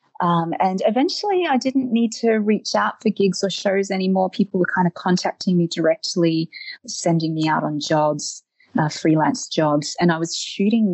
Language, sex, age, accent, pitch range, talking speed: English, female, 30-49, Australian, 160-215 Hz, 175 wpm